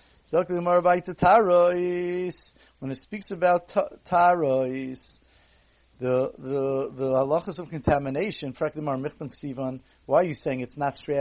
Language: English